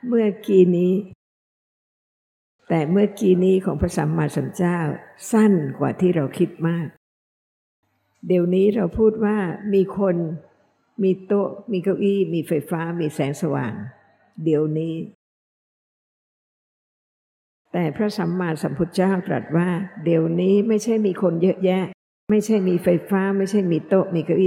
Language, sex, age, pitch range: Thai, female, 60-79, 155-190 Hz